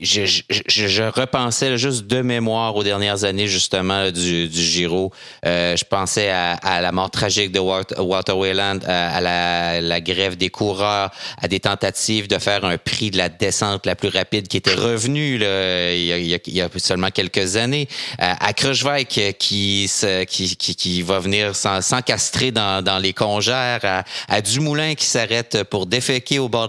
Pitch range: 95-120 Hz